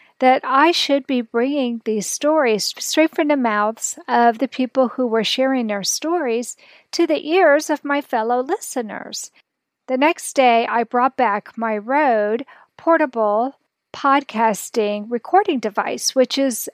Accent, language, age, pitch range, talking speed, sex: American, English, 50-69, 230-290 Hz, 145 wpm, female